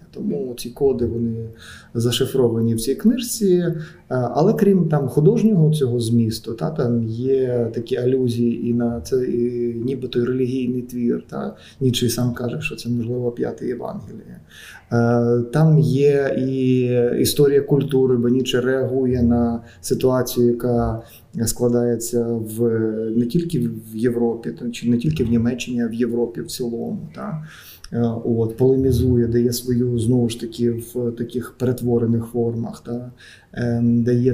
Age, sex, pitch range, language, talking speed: 20-39, male, 115-130 Hz, Ukrainian, 130 wpm